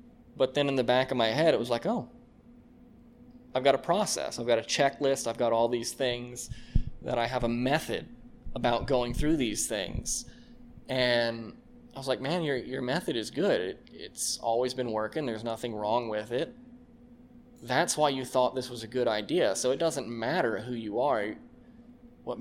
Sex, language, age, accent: male, English, 20-39, American